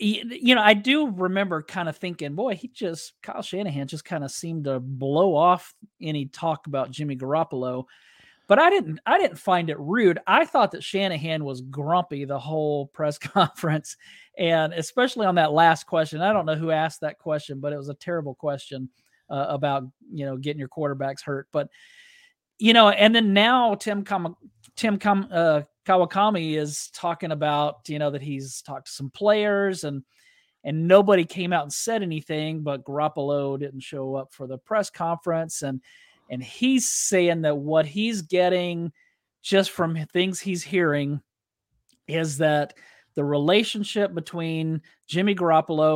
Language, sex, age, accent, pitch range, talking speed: English, male, 40-59, American, 145-195 Hz, 170 wpm